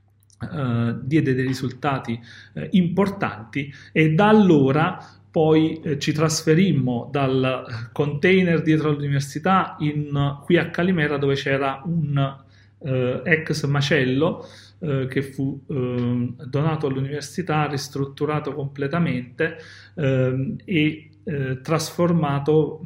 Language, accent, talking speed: Italian, native, 75 wpm